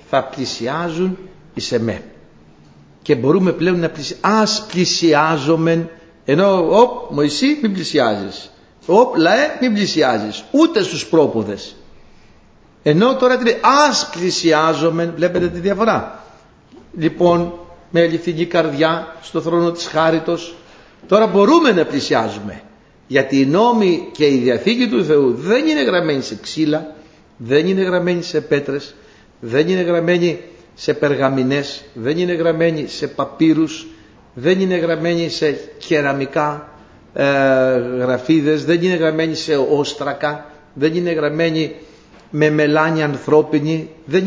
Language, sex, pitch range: Greek, male, 145-180 Hz